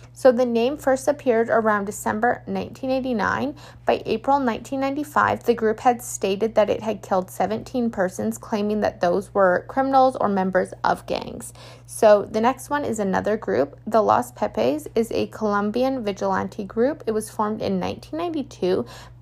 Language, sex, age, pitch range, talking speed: English, female, 20-39, 195-245 Hz, 155 wpm